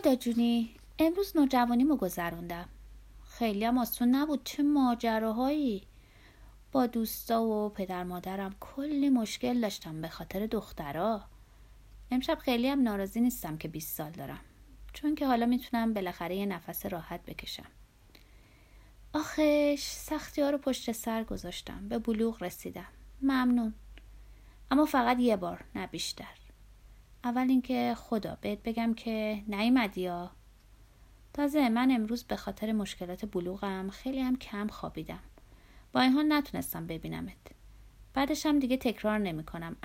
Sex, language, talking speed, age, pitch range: female, Persian, 130 wpm, 30-49, 180-250 Hz